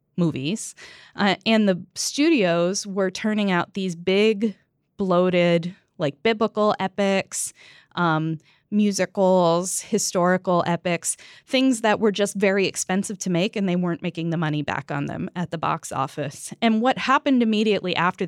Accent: American